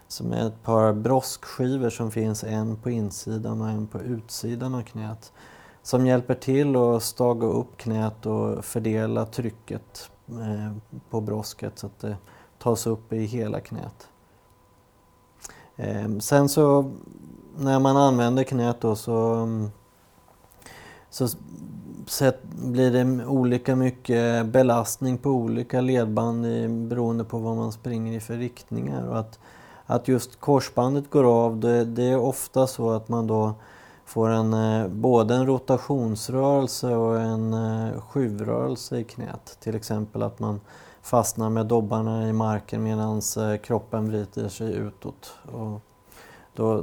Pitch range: 110-125 Hz